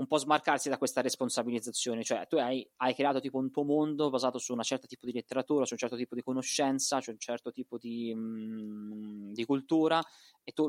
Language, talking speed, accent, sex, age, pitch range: Italian, 210 wpm, native, male, 20-39, 110-130 Hz